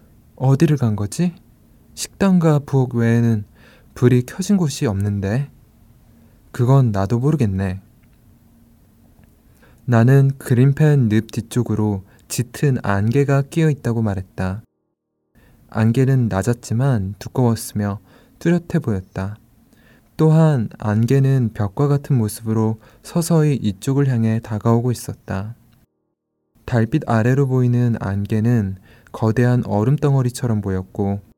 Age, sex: 20-39, male